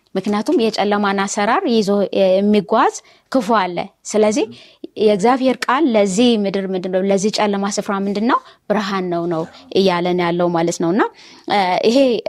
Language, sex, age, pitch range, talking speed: Amharic, female, 20-39, 180-220 Hz, 120 wpm